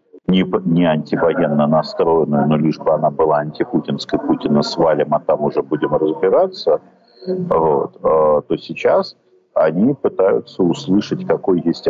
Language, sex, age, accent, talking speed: Ukrainian, male, 50-69, native, 120 wpm